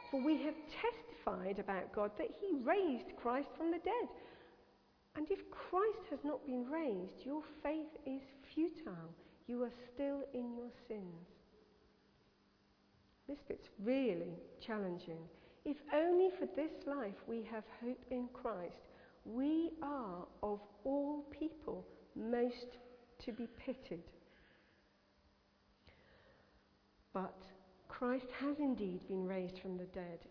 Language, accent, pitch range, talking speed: English, British, 190-280 Hz, 125 wpm